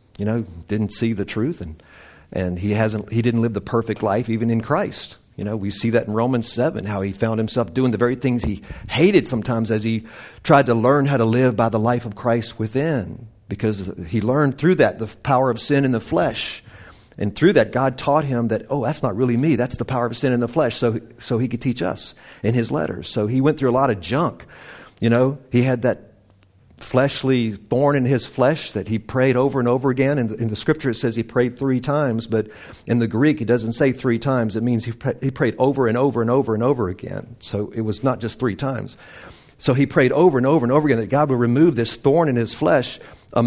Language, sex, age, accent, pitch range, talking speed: English, male, 50-69, American, 110-130 Hz, 245 wpm